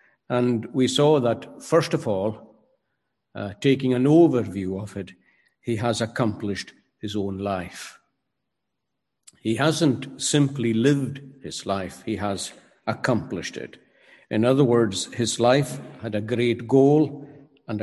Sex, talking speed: male, 130 wpm